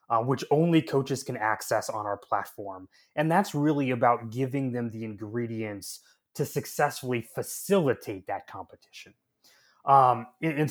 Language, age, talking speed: English, 20-39, 140 wpm